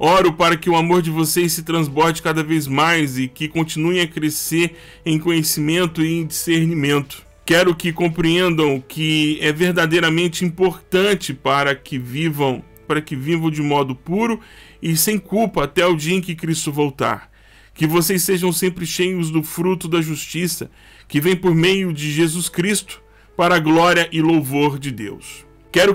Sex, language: male, Portuguese